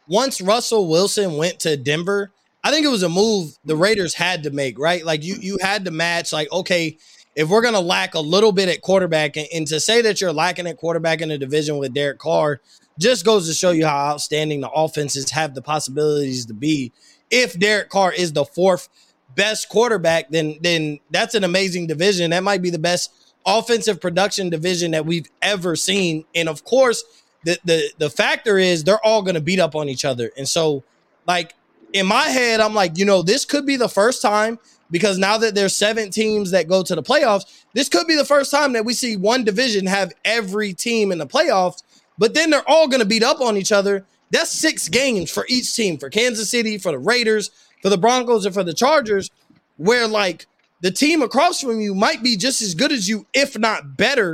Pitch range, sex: 165-220 Hz, male